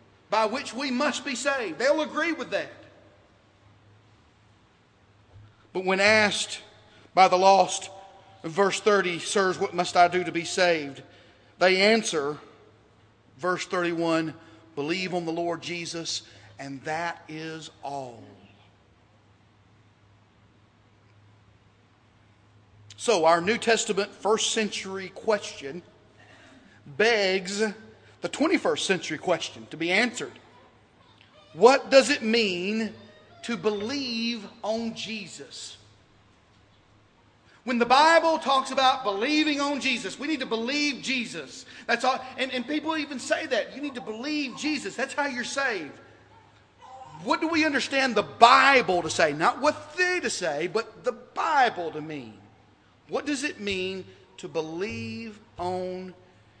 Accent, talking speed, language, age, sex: American, 125 wpm, English, 40-59, male